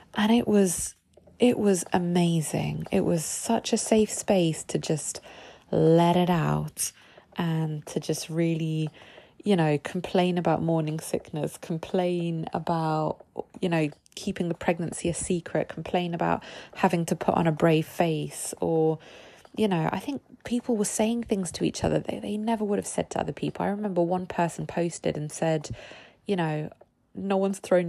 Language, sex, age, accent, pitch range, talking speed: English, female, 20-39, British, 160-200 Hz, 170 wpm